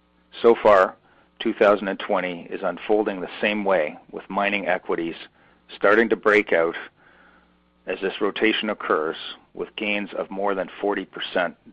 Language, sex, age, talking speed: English, male, 40-59, 130 wpm